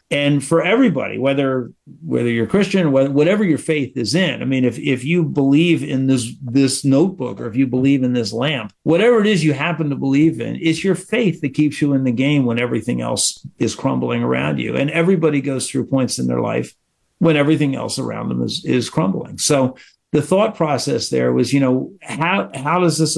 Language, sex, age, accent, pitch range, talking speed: English, male, 50-69, American, 130-165 Hz, 215 wpm